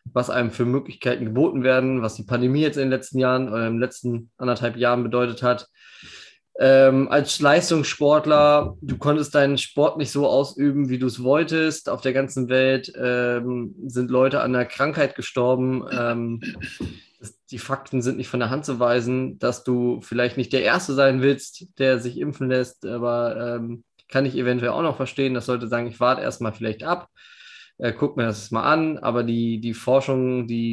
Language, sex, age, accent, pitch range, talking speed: German, male, 20-39, German, 120-135 Hz, 185 wpm